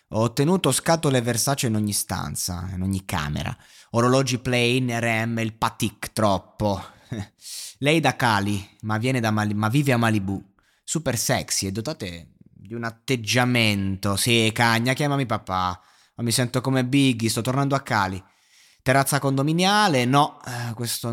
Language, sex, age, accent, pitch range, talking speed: Italian, male, 20-39, native, 105-130 Hz, 145 wpm